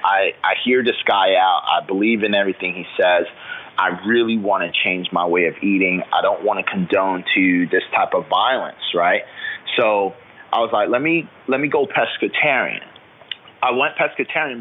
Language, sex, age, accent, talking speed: English, male, 30-49, American, 180 wpm